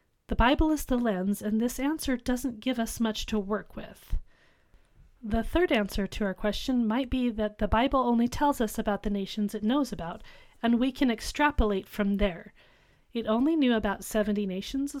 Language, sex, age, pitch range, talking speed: English, female, 30-49, 210-260 Hz, 190 wpm